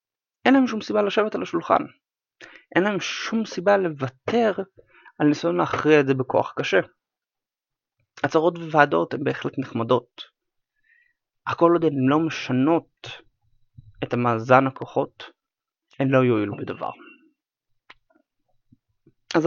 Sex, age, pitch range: male, 30-49, 125-180 Hz